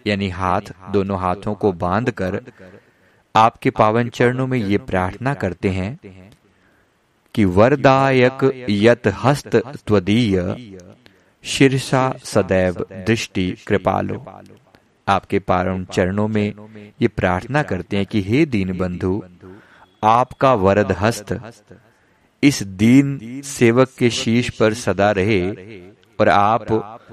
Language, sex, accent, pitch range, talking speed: Hindi, male, native, 100-125 Hz, 100 wpm